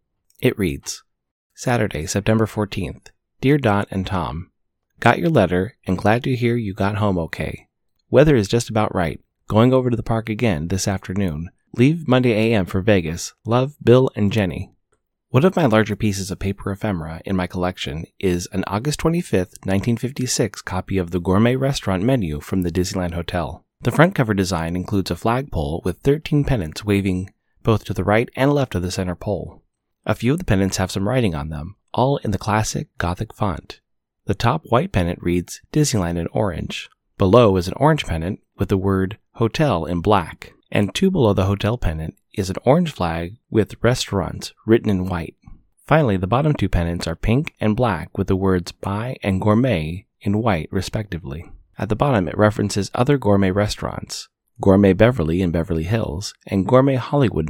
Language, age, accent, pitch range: English, 30-49, American, 90-115 Hz